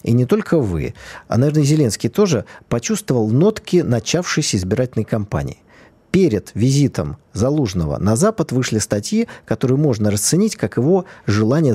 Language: Russian